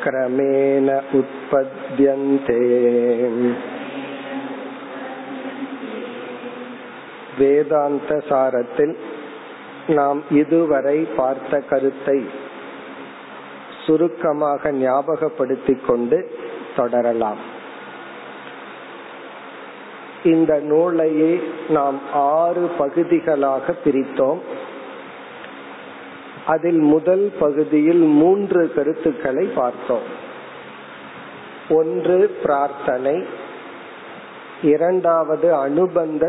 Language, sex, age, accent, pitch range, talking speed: Tamil, male, 50-69, native, 125-170 Hz, 40 wpm